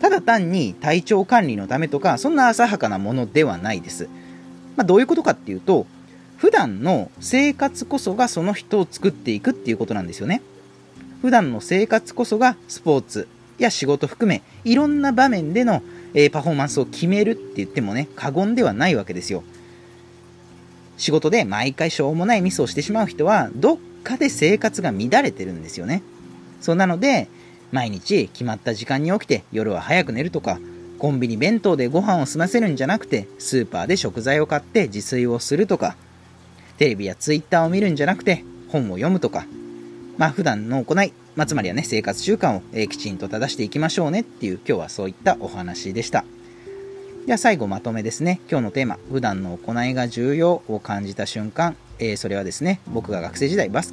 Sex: male